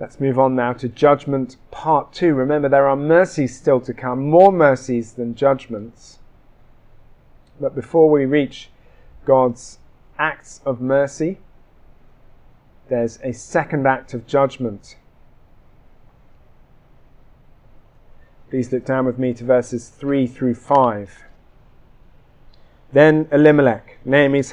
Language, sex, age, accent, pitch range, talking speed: English, male, 30-49, British, 125-155 Hz, 115 wpm